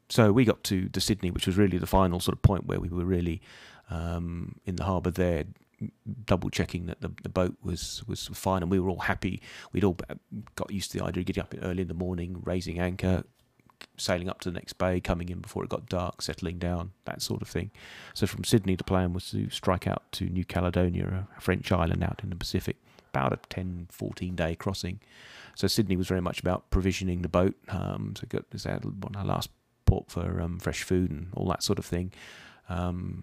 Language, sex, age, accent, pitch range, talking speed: English, male, 30-49, British, 90-100 Hz, 225 wpm